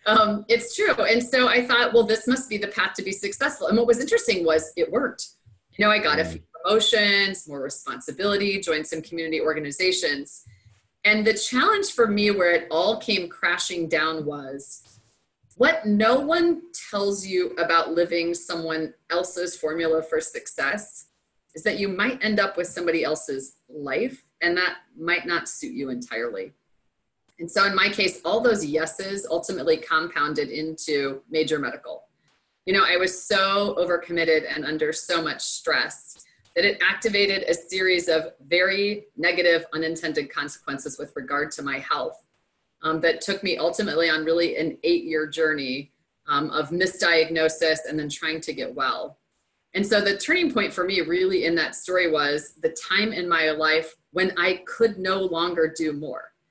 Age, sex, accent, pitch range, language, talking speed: 30-49, female, American, 160-210 Hz, English, 170 wpm